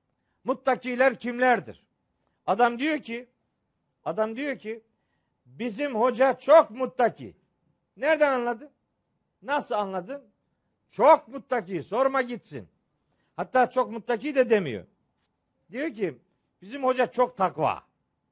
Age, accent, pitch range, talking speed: 60-79, native, 215-260 Hz, 100 wpm